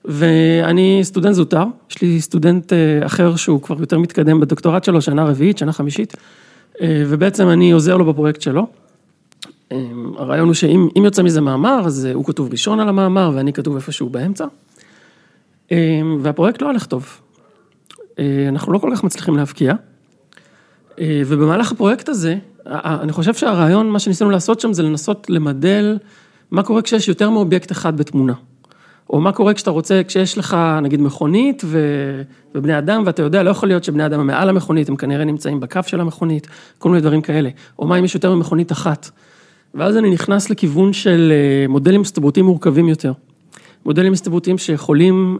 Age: 40-59